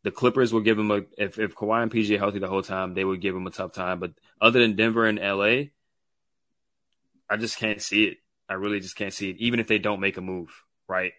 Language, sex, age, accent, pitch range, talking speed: English, male, 20-39, American, 95-110 Hz, 265 wpm